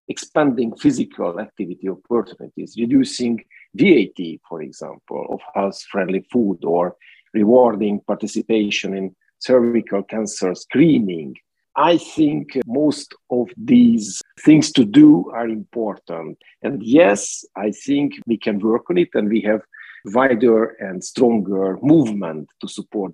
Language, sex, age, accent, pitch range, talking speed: English, male, 50-69, Italian, 105-125 Hz, 120 wpm